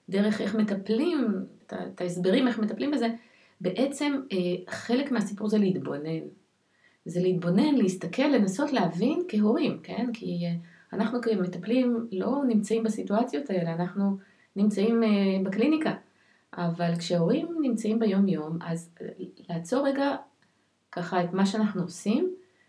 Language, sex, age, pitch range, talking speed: Hebrew, female, 30-49, 175-235 Hz, 115 wpm